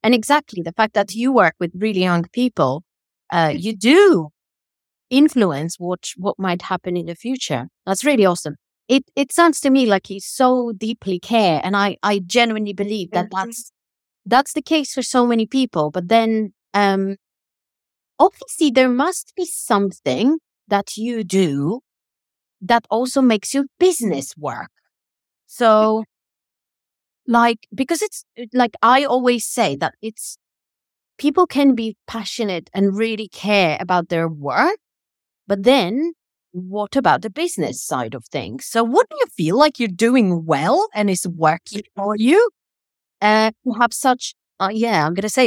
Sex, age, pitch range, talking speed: female, 30-49, 185-250 Hz, 155 wpm